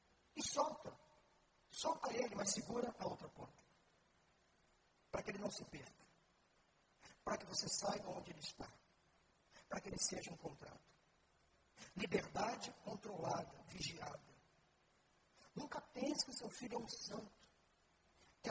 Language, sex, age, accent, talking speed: Portuguese, male, 50-69, Brazilian, 125 wpm